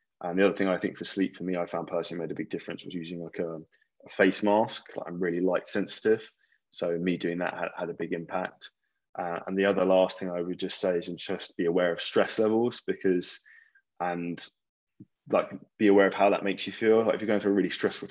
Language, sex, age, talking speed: English, male, 20-39, 245 wpm